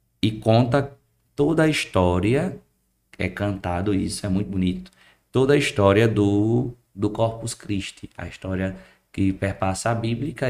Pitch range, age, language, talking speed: 95-115 Hz, 20-39, Portuguese, 135 wpm